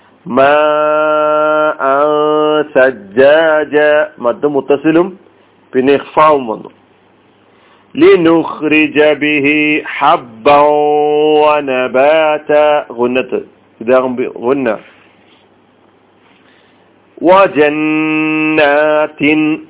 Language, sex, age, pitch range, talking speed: Malayalam, male, 40-59, 140-155 Hz, 45 wpm